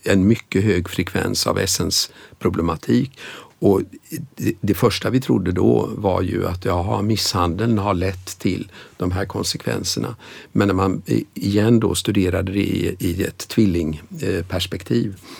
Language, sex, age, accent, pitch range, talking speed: Swedish, male, 50-69, native, 90-105 Hz, 135 wpm